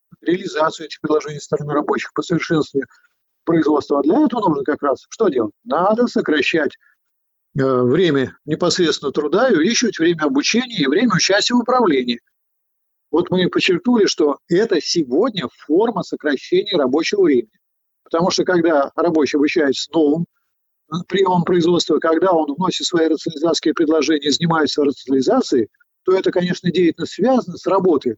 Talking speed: 135 wpm